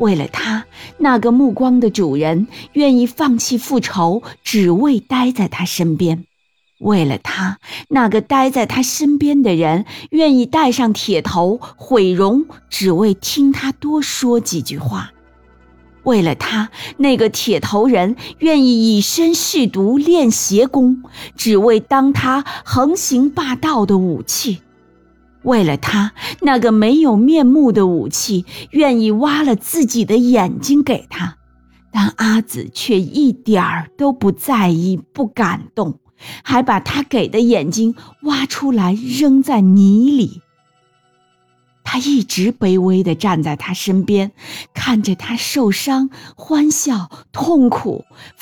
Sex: female